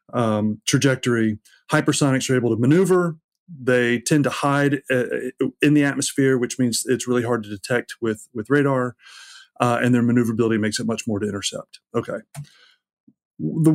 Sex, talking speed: male, 160 wpm